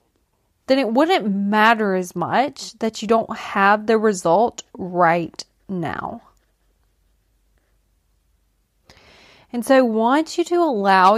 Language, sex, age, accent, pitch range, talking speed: English, female, 20-39, American, 200-265 Hz, 115 wpm